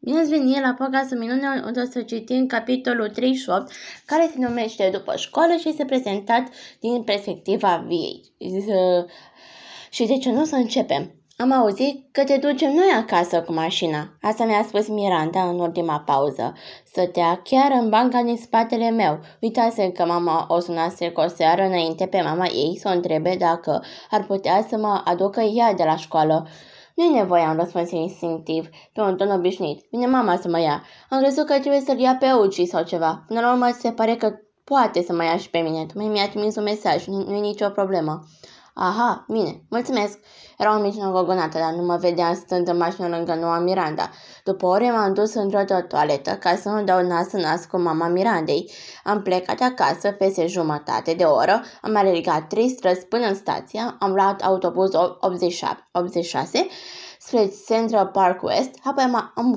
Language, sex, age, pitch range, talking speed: Romanian, female, 20-39, 175-235 Hz, 185 wpm